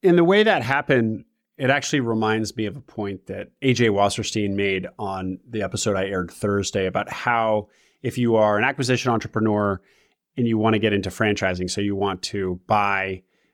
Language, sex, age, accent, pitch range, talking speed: English, male, 30-49, American, 105-135 Hz, 185 wpm